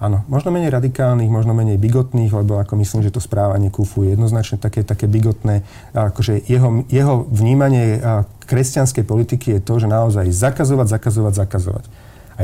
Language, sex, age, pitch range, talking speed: Slovak, male, 40-59, 105-125 Hz, 160 wpm